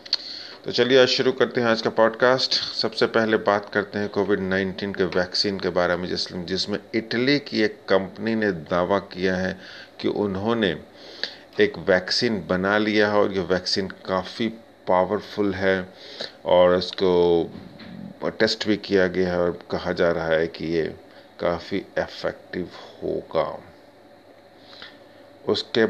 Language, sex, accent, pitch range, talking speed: Hindi, male, native, 90-105 Hz, 145 wpm